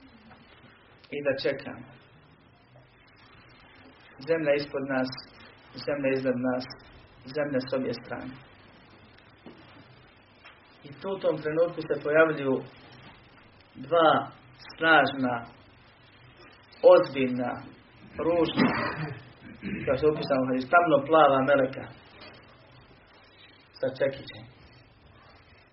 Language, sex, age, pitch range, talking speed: Croatian, male, 40-59, 120-145 Hz, 75 wpm